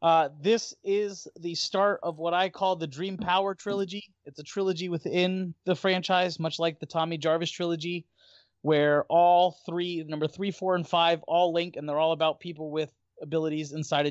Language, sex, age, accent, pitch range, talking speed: English, male, 30-49, American, 135-170 Hz, 185 wpm